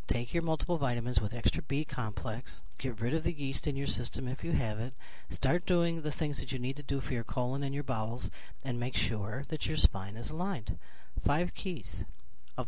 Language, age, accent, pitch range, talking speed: English, 40-59, American, 120-160 Hz, 220 wpm